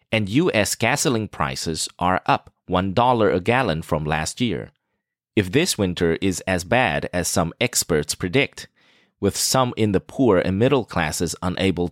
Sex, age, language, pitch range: male, 30-49, English, 90-120 Hz